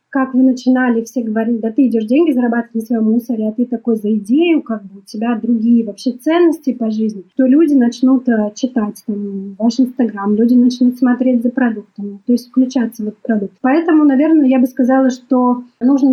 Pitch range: 230-270 Hz